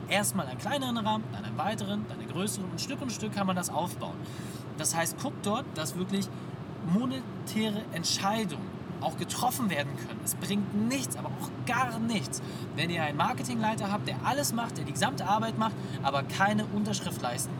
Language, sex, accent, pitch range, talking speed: German, male, German, 150-195 Hz, 190 wpm